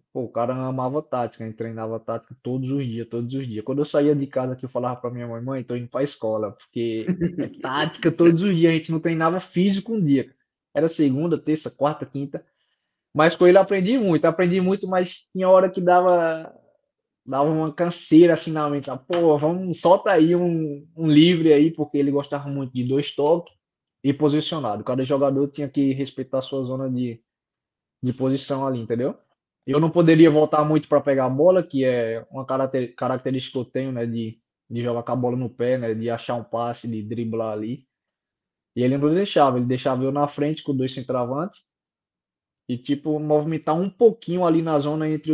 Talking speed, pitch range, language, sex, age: 200 wpm, 125-160 Hz, Portuguese, male, 20-39